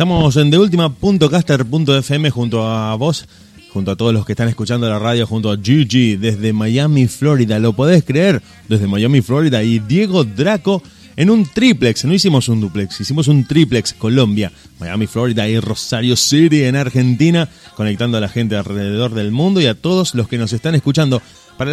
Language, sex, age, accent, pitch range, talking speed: Spanish, male, 30-49, Argentinian, 110-150 Hz, 175 wpm